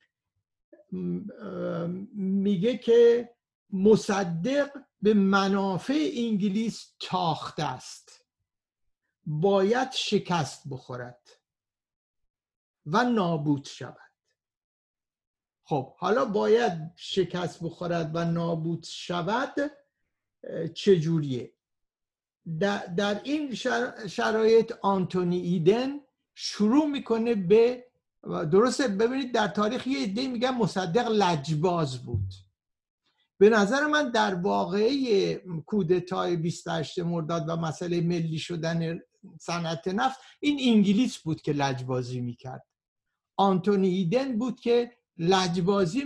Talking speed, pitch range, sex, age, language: 85 wpm, 170-235 Hz, male, 50-69, Persian